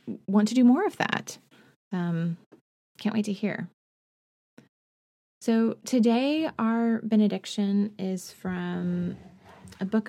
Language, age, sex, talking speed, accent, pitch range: English, 20-39, female, 115 wpm, American, 185-220 Hz